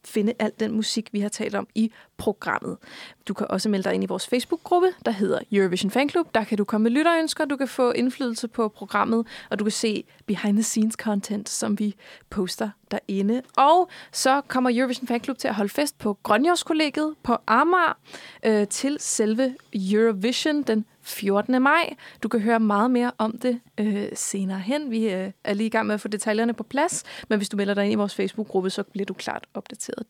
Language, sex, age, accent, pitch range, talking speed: Danish, female, 20-39, native, 215-270 Hz, 195 wpm